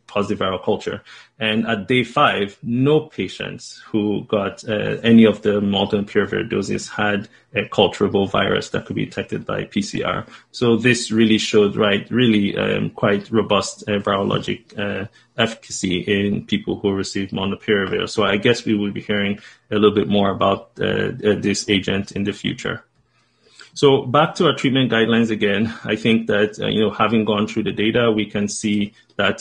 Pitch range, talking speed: 100-115 Hz, 175 wpm